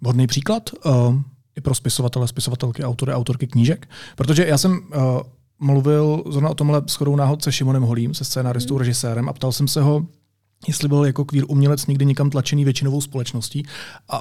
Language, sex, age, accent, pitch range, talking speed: Czech, male, 30-49, native, 120-140 Hz, 175 wpm